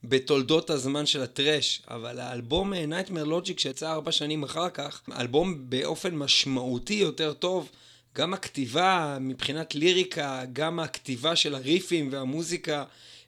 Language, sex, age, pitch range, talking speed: Hebrew, male, 30-49, 130-170 Hz, 120 wpm